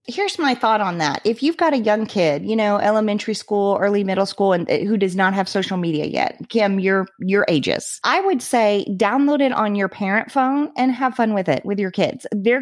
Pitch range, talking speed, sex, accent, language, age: 190-235 Hz, 230 wpm, female, American, English, 30-49